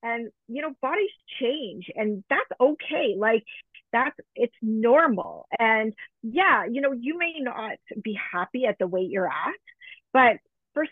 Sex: female